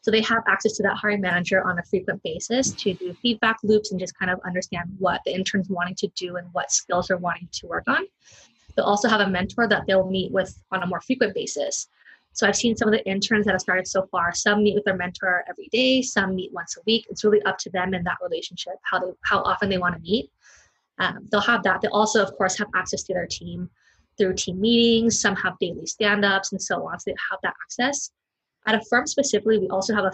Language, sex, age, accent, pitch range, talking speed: English, female, 20-39, American, 185-220 Hz, 245 wpm